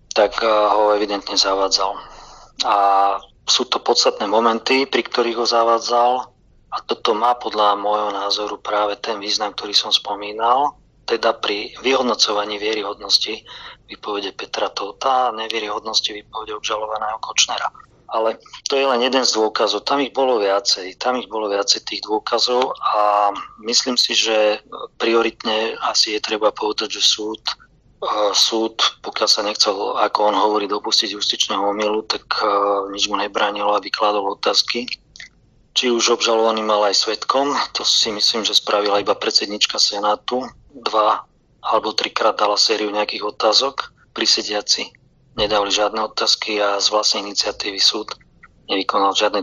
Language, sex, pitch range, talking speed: Slovak, male, 105-115 Hz, 140 wpm